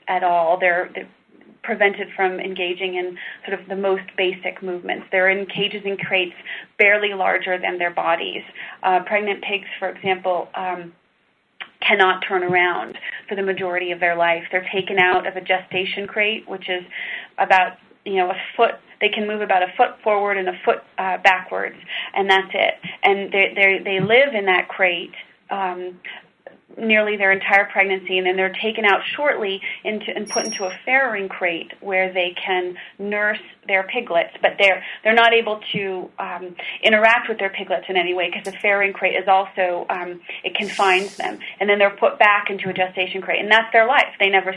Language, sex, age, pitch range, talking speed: English, female, 30-49, 185-205 Hz, 185 wpm